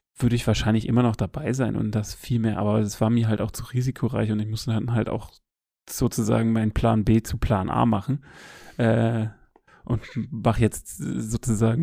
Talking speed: 195 wpm